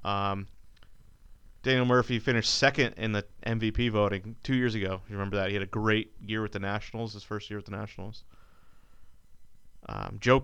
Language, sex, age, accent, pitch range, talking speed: English, male, 30-49, American, 100-120 Hz, 180 wpm